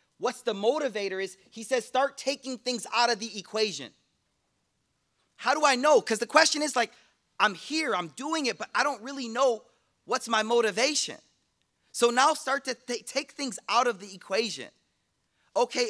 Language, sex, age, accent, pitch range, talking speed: English, male, 30-49, American, 205-270 Hz, 175 wpm